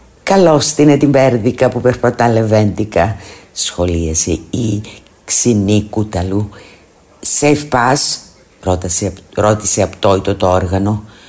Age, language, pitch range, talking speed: 50-69, Greek, 90-120 Hz, 80 wpm